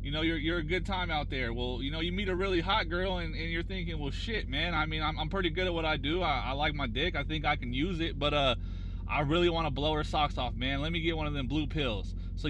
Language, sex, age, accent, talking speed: English, male, 30-49, American, 315 wpm